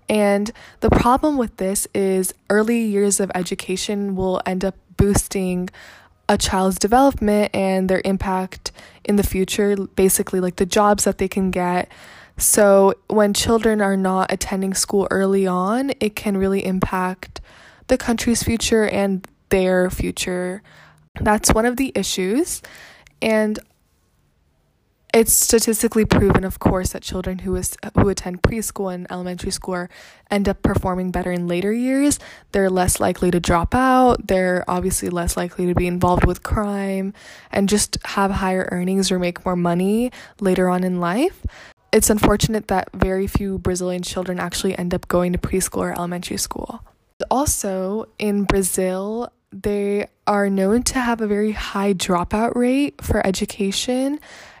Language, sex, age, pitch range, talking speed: English, female, 20-39, 185-210 Hz, 150 wpm